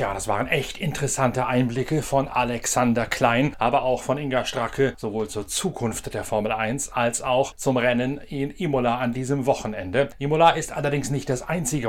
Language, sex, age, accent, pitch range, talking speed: German, male, 30-49, German, 115-140 Hz, 175 wpm